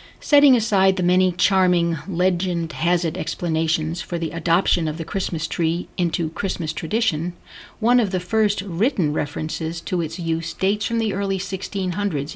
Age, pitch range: 50-69, 160-200 Hz